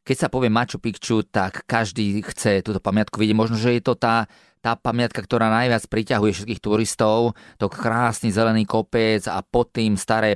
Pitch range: 100-115 Hz